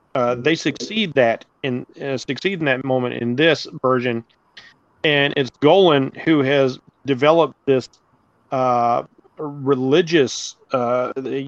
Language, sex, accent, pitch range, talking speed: English, male, American, 130-155 Hz, 120 wpm